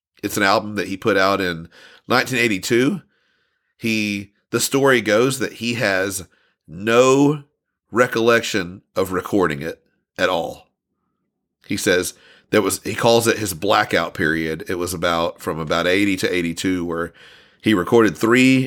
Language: English